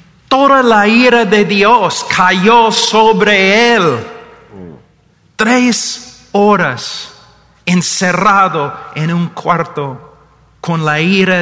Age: 40-59